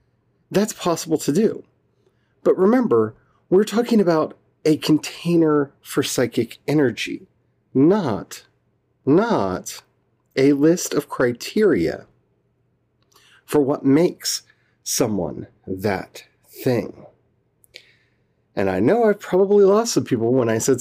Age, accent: 40-59, American